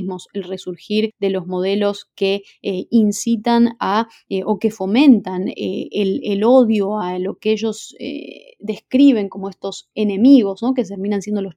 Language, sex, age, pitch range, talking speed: Spanish, female, 20-39, 190-235 Hz, 160 wpm